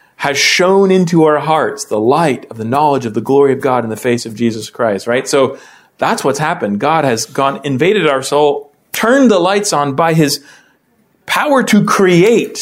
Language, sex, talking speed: English, male, 195 wpm